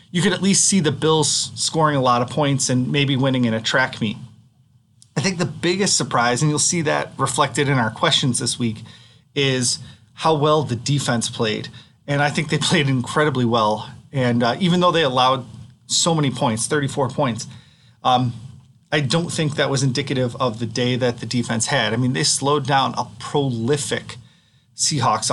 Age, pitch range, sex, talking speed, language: 30-49, 120-150 Hz, male, 190 wpm, English